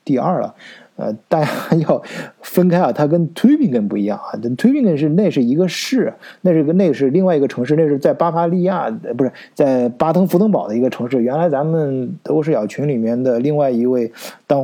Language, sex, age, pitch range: Chinese, male, 20-39, 110-160 Hz